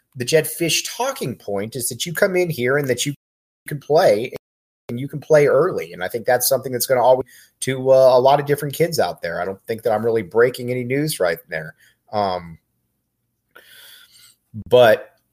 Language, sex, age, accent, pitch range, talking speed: English, male, 30-49, American, 110-155 Hz, 205 wpm